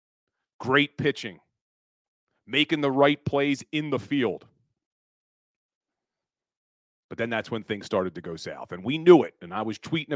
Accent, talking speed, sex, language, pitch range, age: American, 155 wpm, male, English, 105-145 Hz, 40-59